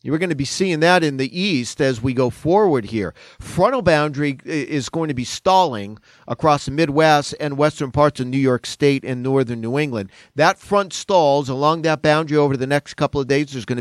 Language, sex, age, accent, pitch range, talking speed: English, male, 40-59, American, 125-160 Hz, 215 wpm